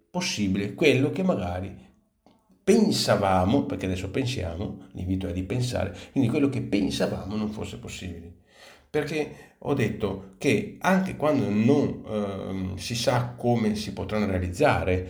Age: 50-69